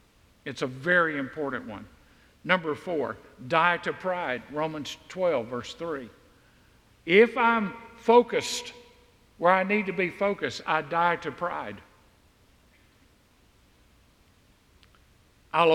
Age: 60-79